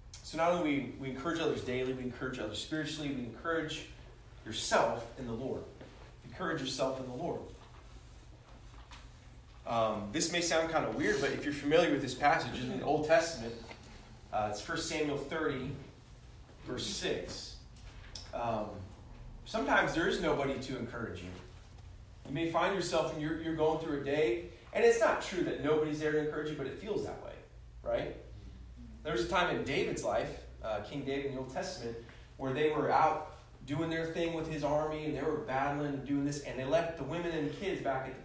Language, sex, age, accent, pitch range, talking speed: English, male, 30-49, American, 120-160 Hz, 195 wpm